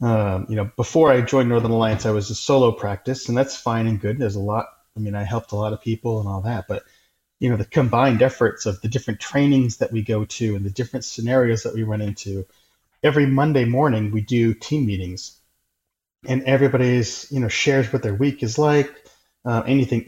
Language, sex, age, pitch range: English, male, 30-49, 105-130 Hz